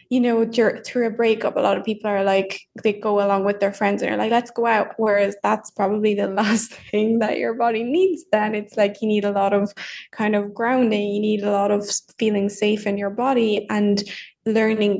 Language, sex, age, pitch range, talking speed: English, female, 10-29, 200-225 Hz, 225 wpm